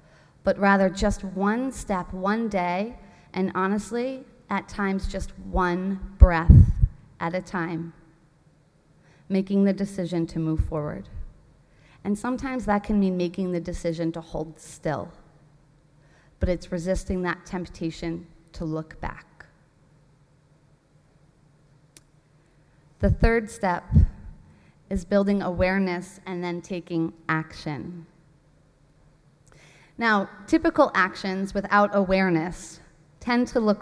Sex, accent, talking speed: female, American, 105 wpm